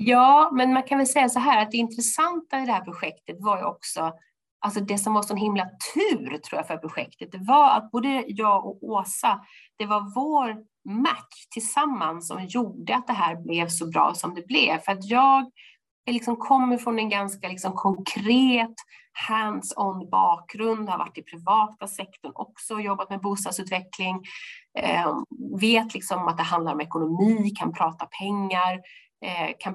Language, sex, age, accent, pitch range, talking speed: Swedish, female, 30-49, native, 180-230 Hz, 175 wpm